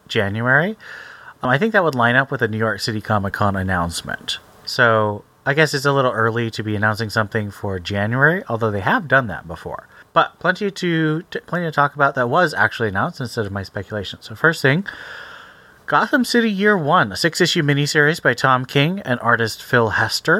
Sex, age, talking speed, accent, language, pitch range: male, 30-49, 200 wpm, American, English, 105-140 Hz